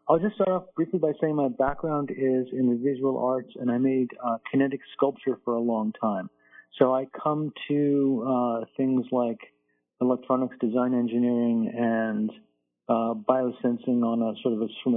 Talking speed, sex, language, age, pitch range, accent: 170 wpm, male, English, 40-59, 115-135 Hz, American